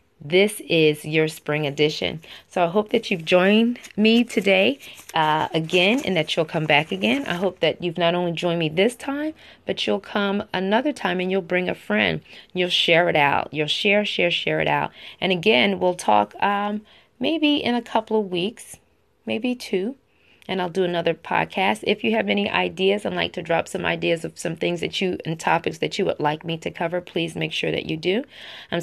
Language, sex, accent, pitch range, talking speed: English, female, American, 155-205 Hz, 210 wpm